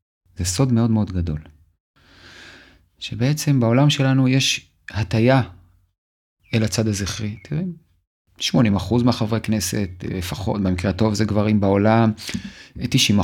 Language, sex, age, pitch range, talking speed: Hebrew, male, 30-49, 95-130 Hz, 105 wpm